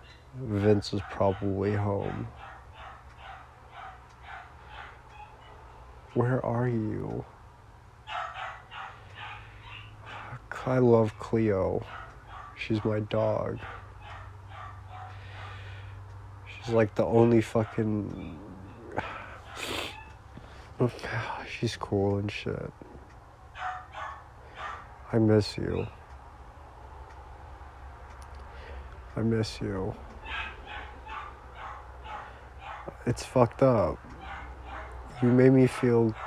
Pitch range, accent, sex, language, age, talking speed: 80-115 Hz, American, male, English, 50-69, 60 wpm